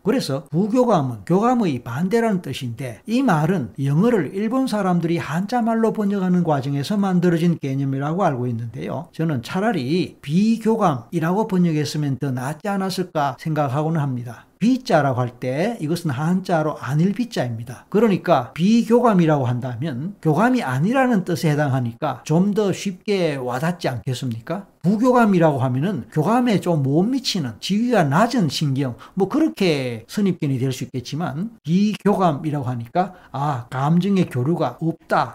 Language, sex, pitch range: Korean, male, 140-195 Hz